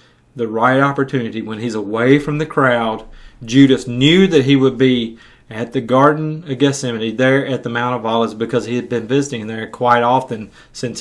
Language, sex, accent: English, male, American